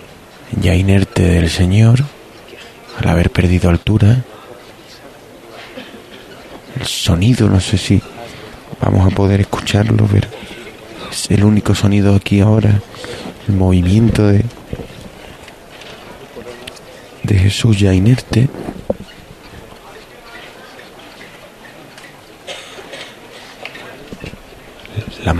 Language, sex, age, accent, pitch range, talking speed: Spanish, male, 30-49, Spanish, 90-110 Hz, 75 wpm